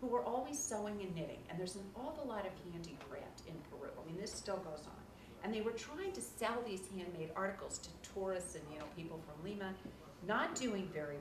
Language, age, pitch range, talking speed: English, 40-59, 170-230 Hz, 225 wpm